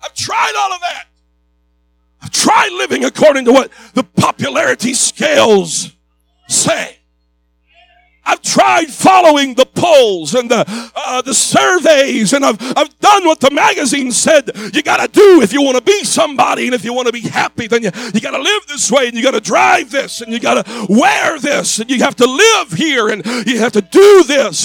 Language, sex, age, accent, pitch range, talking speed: English, male, 50-69, American, 240-315 Hz, 190 wpm